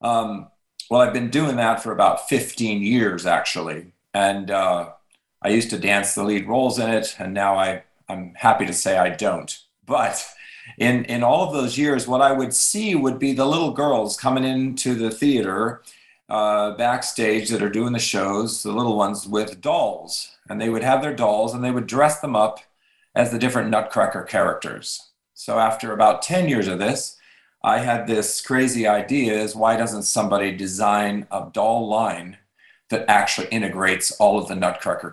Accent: American